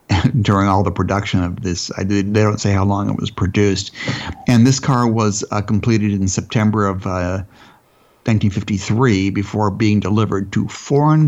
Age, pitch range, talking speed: 60-79, 100-115 Hz, 160 wpm